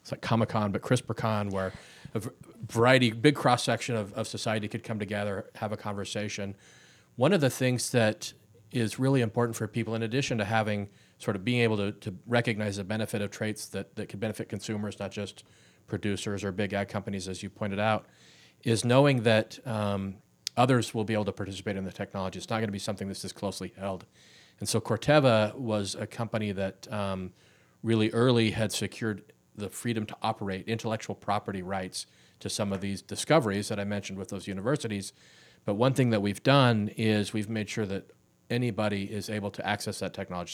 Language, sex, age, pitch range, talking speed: English, male, 40-59, 100-120 Hz, 190 wpm